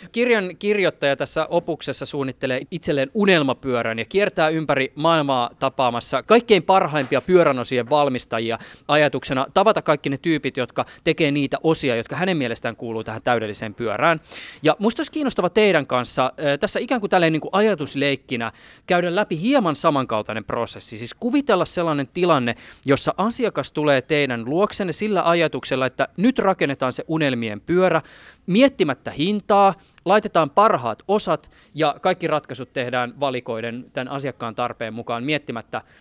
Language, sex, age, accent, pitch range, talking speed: Finnish, male, 20-39, native, 130-180 Hz, 135 wpm